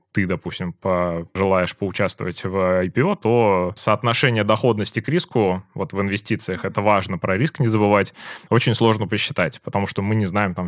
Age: 20-39